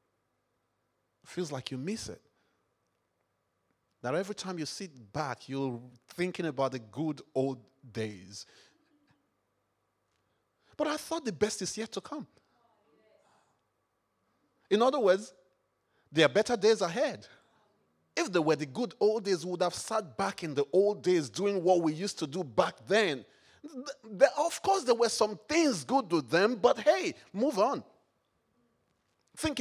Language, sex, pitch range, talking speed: English, male, 175-260 Hz, 150 wpm